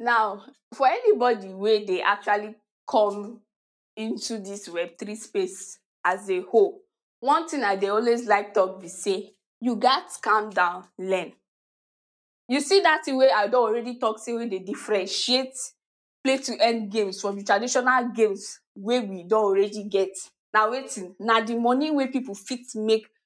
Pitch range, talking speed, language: 200-265 Hz, 165 wpm, English